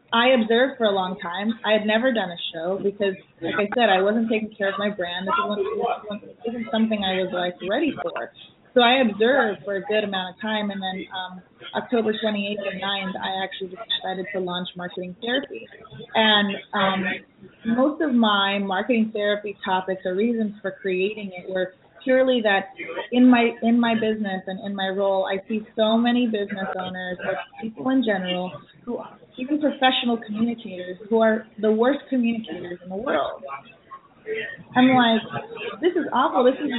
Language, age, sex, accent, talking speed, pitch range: English, 30-49, female, American, 185 wpm, 190-230 Hz